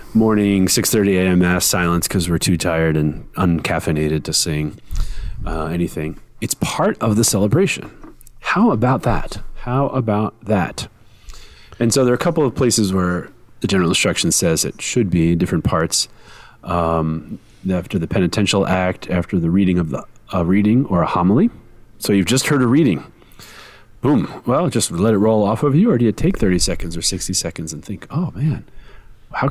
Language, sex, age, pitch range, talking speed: English, male, 30-49, 85-115 Hz, 180 wpm